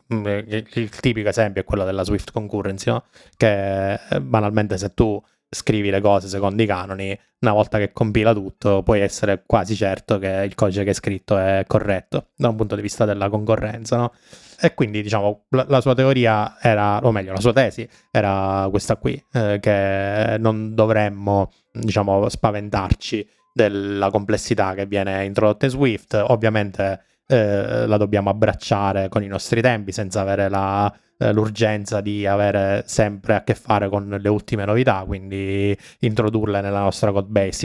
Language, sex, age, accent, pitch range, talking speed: Italian, male, 20-39, native, 100-115 Hz, 165 wpm